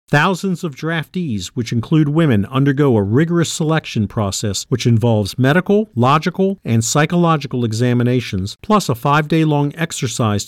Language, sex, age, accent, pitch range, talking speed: English, male, 50-69, American, 115-160 Hz, 130 wpm